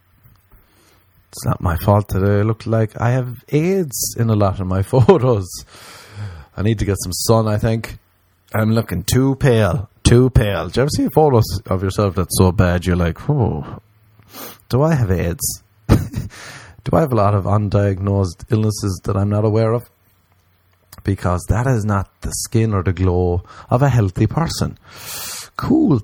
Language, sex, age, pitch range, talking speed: English, male, 30-49, 90-115 Hz, 175 wpm